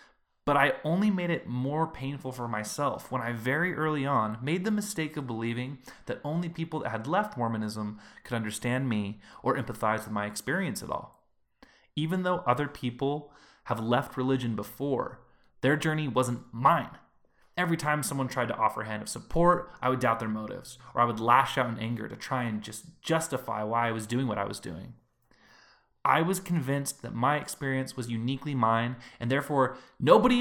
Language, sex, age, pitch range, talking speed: English, male, 20-39, 115-155 Hz, 185 wpm